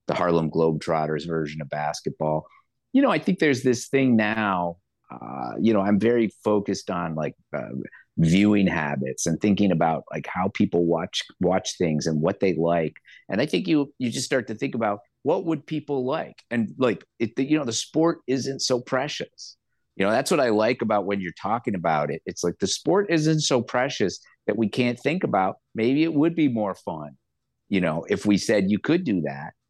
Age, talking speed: 50-69, 205 wpm